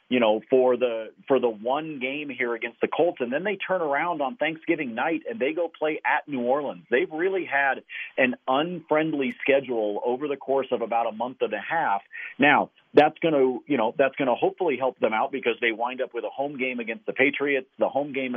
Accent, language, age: American, English, 40-59